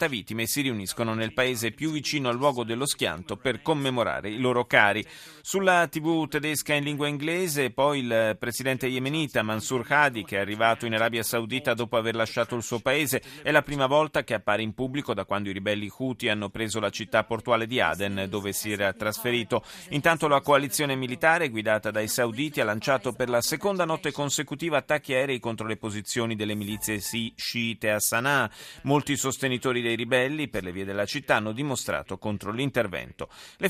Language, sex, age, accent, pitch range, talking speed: Italian, male, 30-49, native, 110-140 Hz, 185 wpm